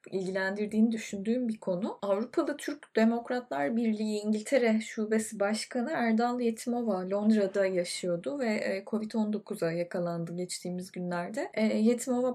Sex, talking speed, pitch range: female, 100 wpm, 195-230 Hz